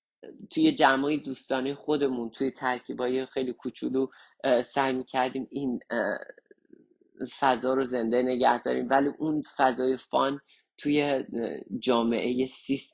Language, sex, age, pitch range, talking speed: Persian, male, 40-59, 130-145 Hz, 105 wpm